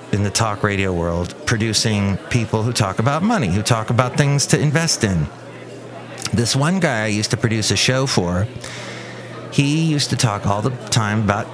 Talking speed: 185 wpm